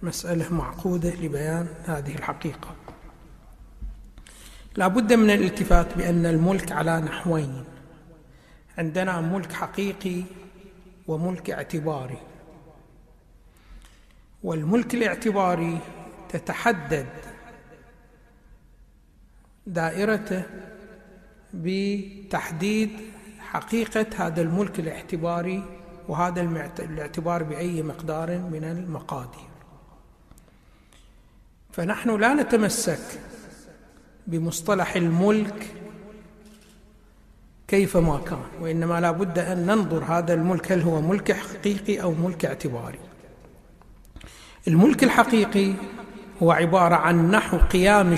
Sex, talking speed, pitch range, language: male, 75 wpm, 165-200 Hz, Arabic